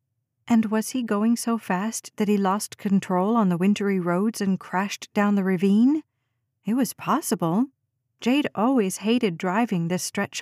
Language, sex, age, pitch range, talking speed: English, female, 40-59, 175-220 Hz, 160 wpm